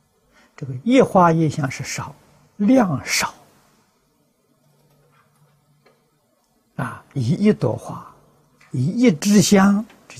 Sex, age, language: male, 60-79, Chinese